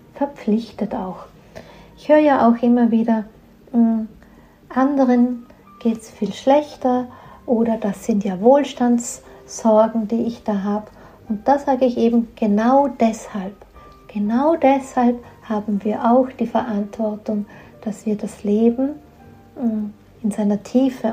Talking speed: 130 wpm